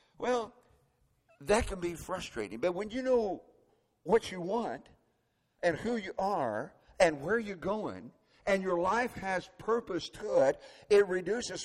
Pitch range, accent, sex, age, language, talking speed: 145-200 Hz, American, male, 50-69, English, 150 wpm